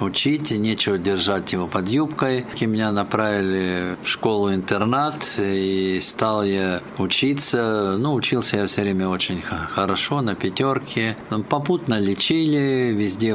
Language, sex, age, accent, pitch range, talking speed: Russian, male, 50-69, native, 100-125 Hz, 125 wpm